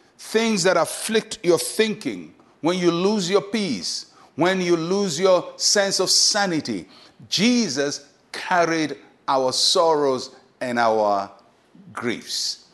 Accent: Nigerian